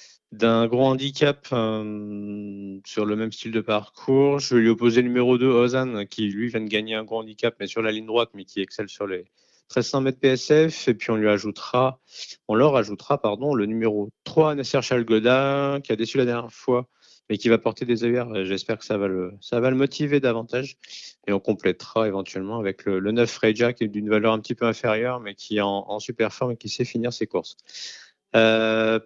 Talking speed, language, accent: 220 wpm, French, French